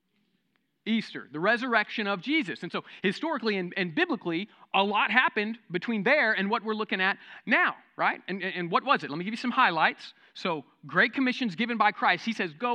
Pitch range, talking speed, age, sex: 185-250 Hz, 200 wpm, 30-49, male